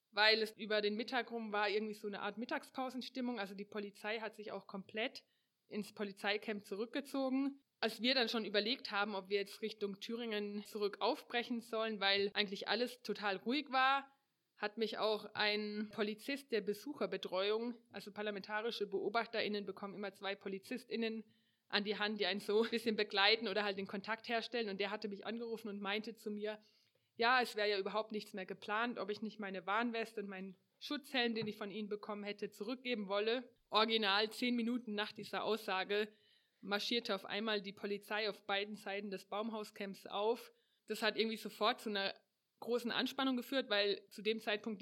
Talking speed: 180 wpm